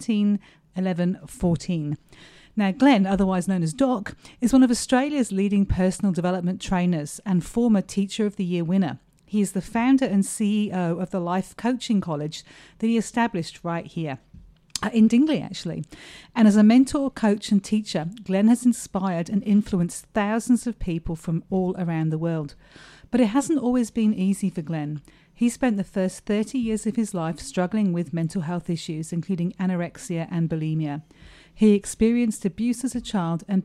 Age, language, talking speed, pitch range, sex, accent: 40-59, English, 170 wpm, 170-220 Hz, female, British